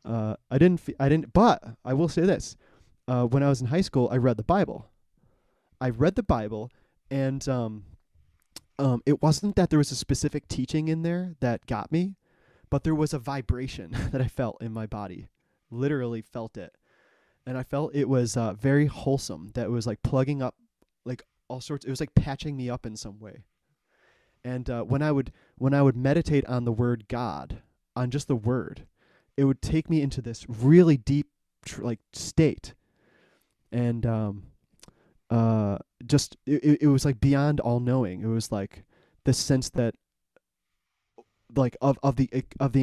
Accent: American